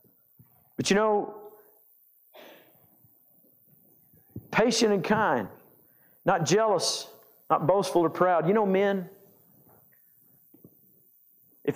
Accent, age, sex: American, 50-69, male